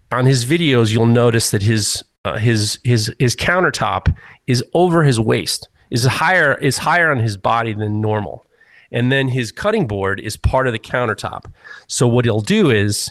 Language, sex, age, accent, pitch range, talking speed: English, male, 30-49, American, 110-140 Hz, 185 wpm